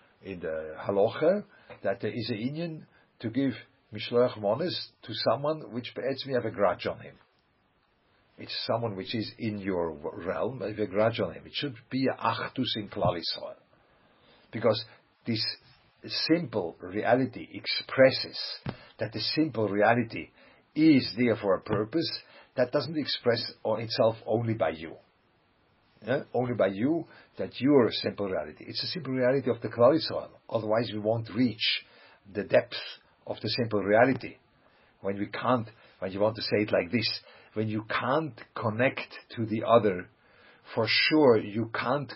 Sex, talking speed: male, 155 wpm